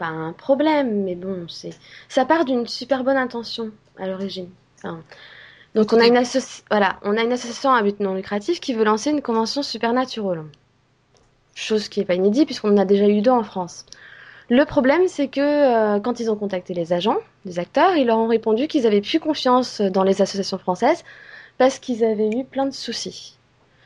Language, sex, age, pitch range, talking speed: French, female, 20-39, 180-245 Hz, 205 wpm